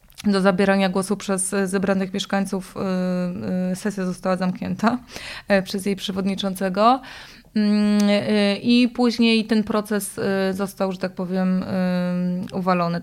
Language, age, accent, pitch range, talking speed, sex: Polish, 20-39, native, 190-220 Hz, 95 wpm, female